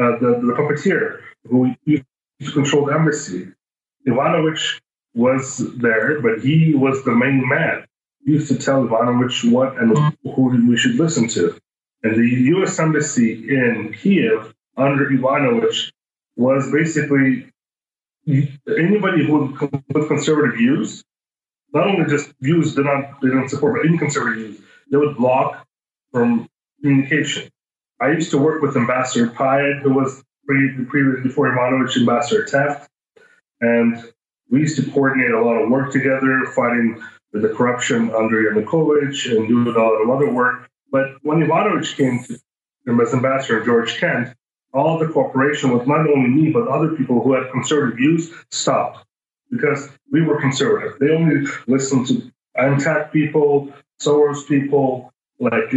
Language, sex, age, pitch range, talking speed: English, male, 30-49, 125-150 Hz, 145 wpm